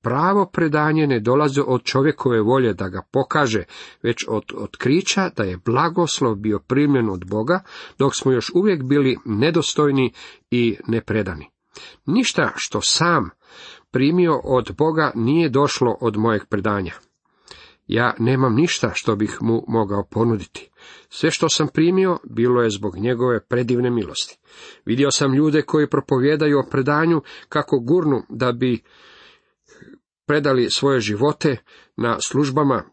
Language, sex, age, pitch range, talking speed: Croatian, male, 40-59, 110-145 Hz, 135 wpm